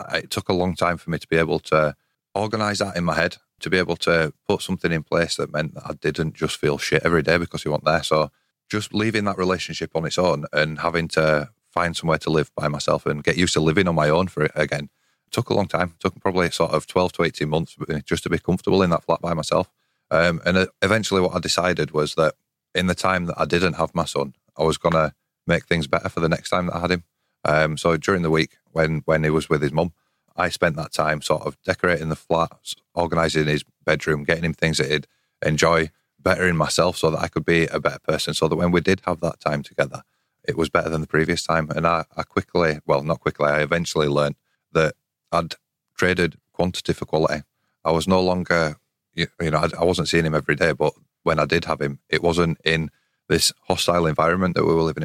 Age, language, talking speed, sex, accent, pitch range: 30-49, English, 240 wpm, male, British, 75-90 Hz